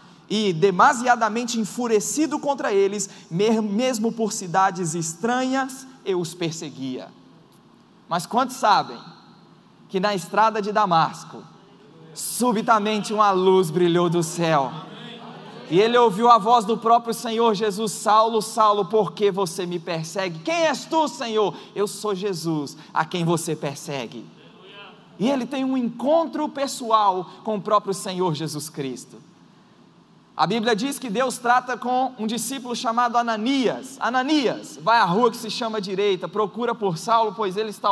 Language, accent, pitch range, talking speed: Portuguese, Brazilian, 200-265 Hz, 140 wpm